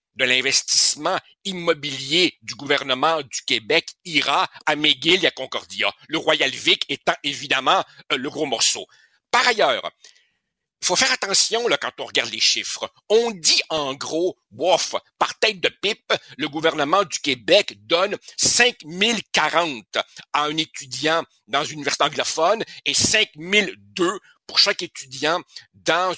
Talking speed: 140 wpm